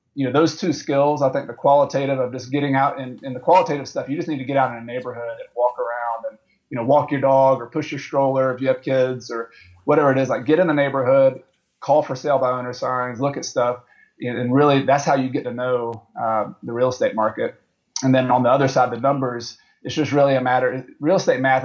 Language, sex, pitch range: English, male, 120-135 Hz